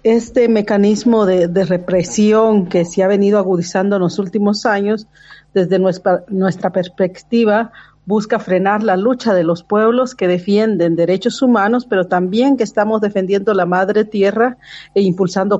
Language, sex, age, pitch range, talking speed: Spanish, female, 50-69, 180-215 Hz, 150 wpm